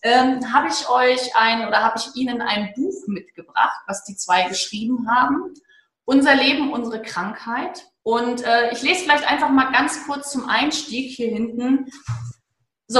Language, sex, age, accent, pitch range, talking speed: German, female, 30-49, German, 210-270 Hz, 160 wpm